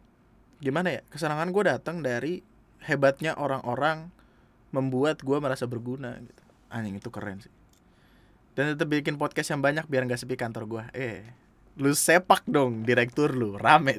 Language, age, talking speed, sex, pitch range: Indonesian, 20-39, 150 wpm, male, 120-160 Hz